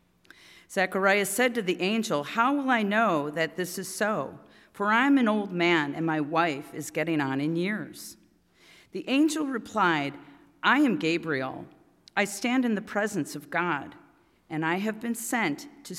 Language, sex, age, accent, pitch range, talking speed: English, female, 40-59, American, 150-210 Hz, 175 wpm